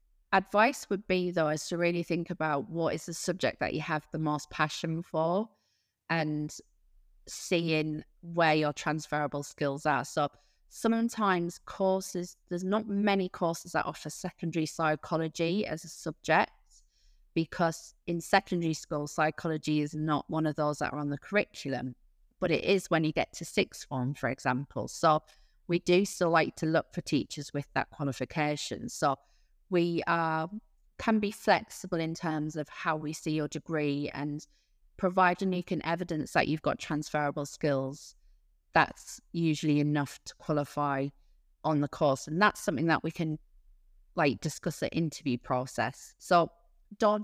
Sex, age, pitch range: female, 30-49, 150-175 Hz